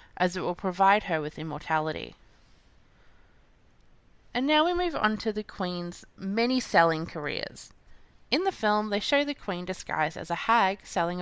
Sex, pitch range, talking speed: female, 170-220 Hz, 160 wpm